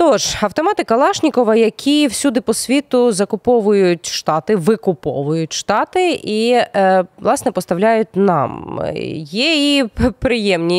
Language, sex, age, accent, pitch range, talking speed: Ukrainian, female, 20-39, native, 175-235 Hz, 100 wpm